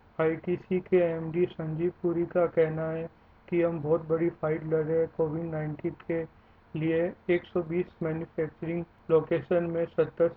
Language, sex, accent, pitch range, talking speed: Hindi, male, native, 160-175 Hz, 150 wpm